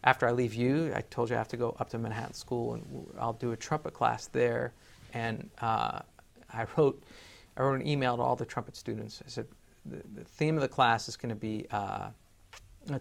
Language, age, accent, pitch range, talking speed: English, 40-59, American, 115-140 Hz, 225 wpm